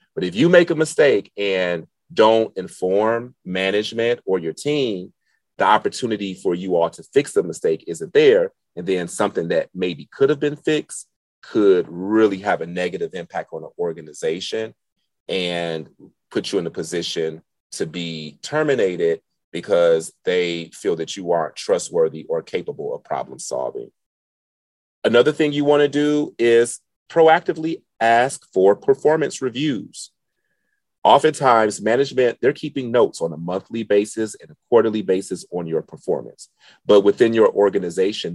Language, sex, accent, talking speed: English, male, American, 150 wpm